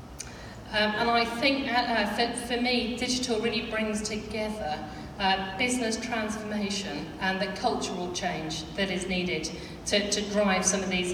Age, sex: 40-59, female